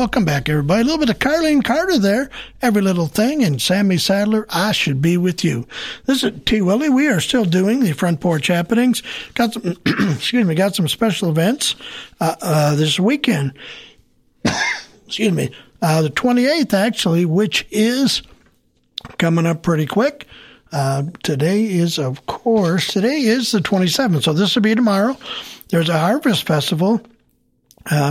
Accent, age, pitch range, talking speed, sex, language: American, 60-79, 165-225 Hz, 165 wpm, male, English